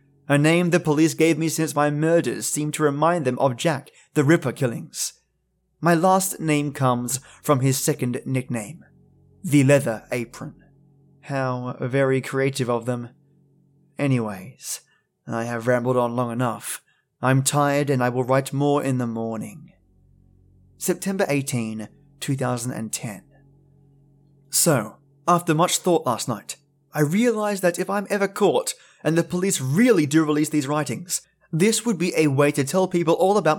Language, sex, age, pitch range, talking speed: English, male, 20-39, 130-170 Hz, 150 wpm